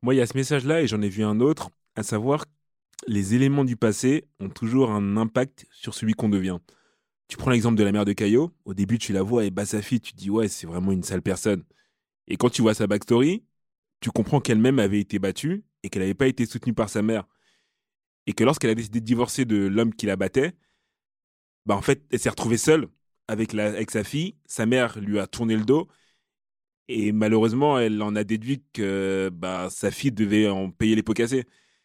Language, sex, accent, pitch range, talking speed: French, male, French, 105-130 Hz, 230 wpm